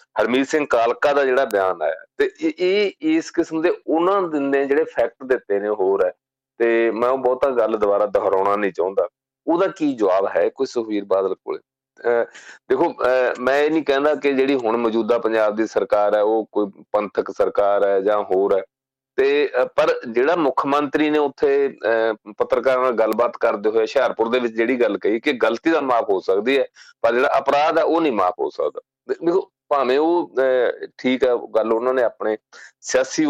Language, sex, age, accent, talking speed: English, male, 40-59, Indian, 115 wpm